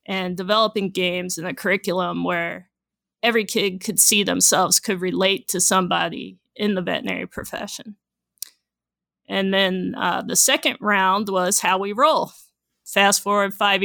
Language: English